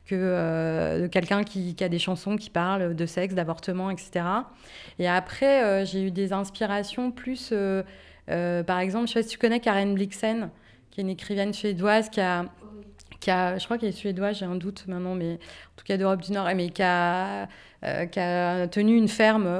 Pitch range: 185-220 Hz